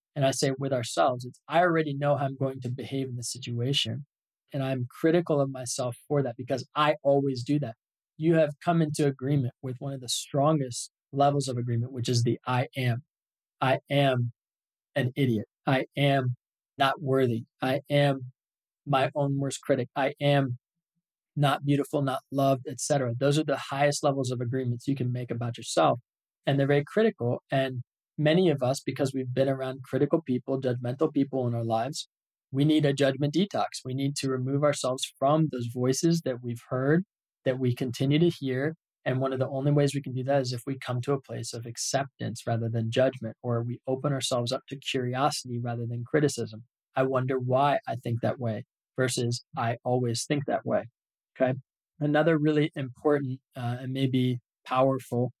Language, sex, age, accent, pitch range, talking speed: English, male, 20-39, American, 125-145 Hz, 185 wpm